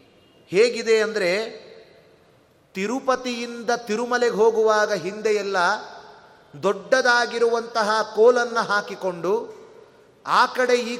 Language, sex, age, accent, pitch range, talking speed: Kannada, male, 30-49, native, 205-255 Hz, 65 wpm